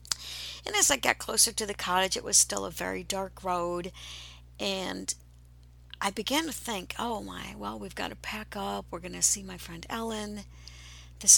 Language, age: English, 60-79